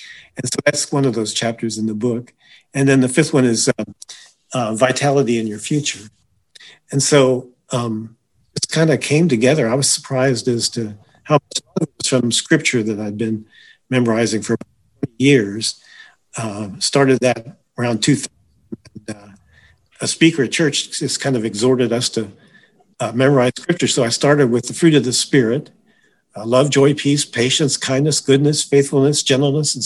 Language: English